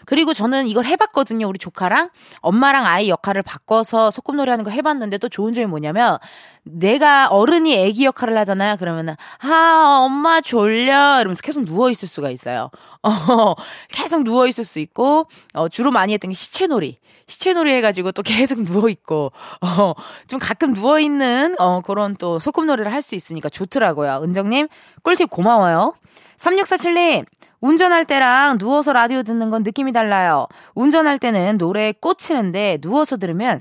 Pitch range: 190-290 Hz